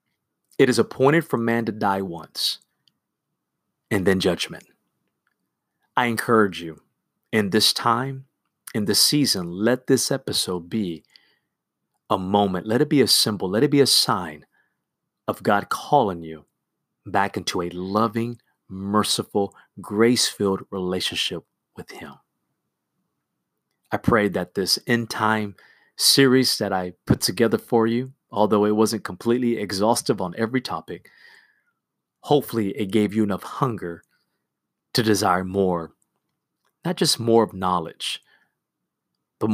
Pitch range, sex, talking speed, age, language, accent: 95-115 Hz, male, 130 wpm, 30-49, English, American